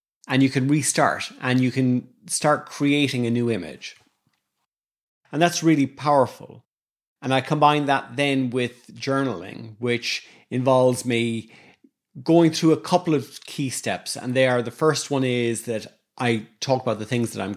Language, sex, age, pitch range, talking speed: English, male, 30-49, 115-140 Hz, 165 wpm